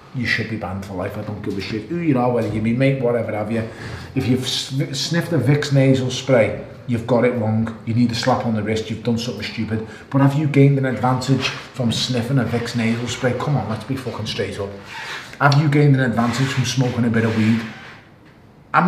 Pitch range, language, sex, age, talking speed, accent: 115-140 Hz, English, male, 30-49, 235 wpm, British